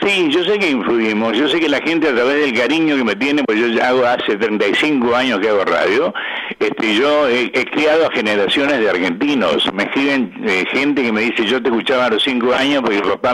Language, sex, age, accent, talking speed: Spanish, male, 60-79, Argentinian, 240 wpm